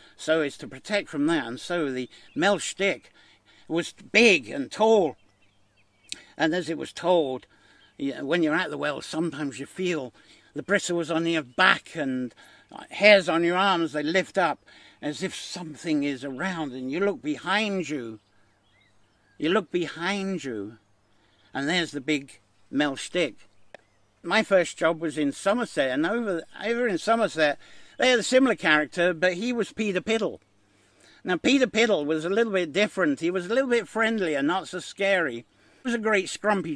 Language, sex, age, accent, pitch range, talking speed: English, male, 60-79, British, 150-210 Hz, 175 wpm